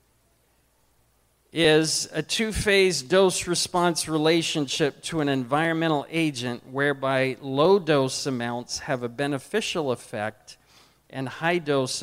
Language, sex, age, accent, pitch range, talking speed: English, male, 40-59, American, 135-170 Hz, 90 wpm